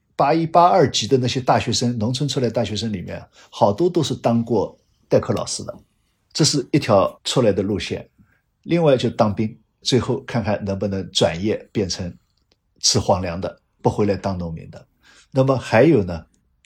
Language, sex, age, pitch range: Chinese, male, 50-69, 105-145 Hz